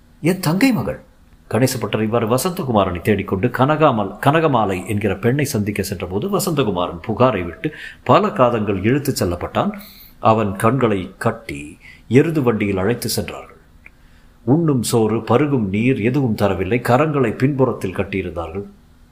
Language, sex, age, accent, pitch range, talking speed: Tamil, male, 50-69, native, 100-145 Hz, 105 wpm